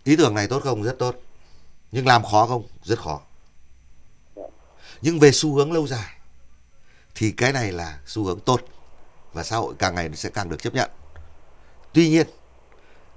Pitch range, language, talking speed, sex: 80-125 Hz, Vietnamese, 175 wpm, male